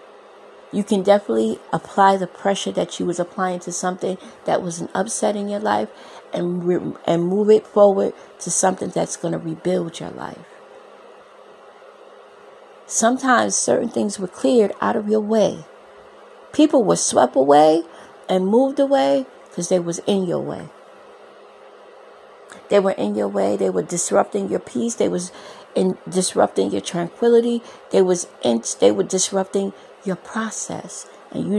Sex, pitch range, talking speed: female, 175-225 Hz, 150 wpm